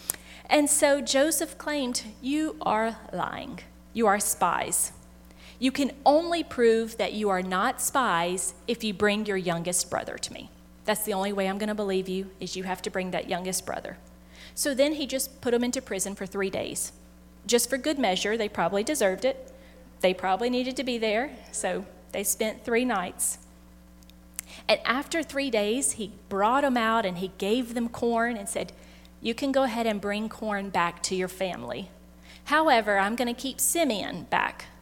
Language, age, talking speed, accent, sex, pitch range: English, 40-59, 185 wpm, American, female, 170-235 Hz